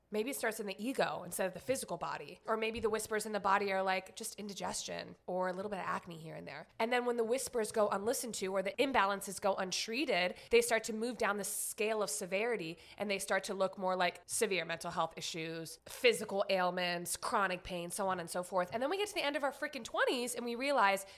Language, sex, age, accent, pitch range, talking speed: English, female, 20-39, American, 185-240 Hz, 245 wpm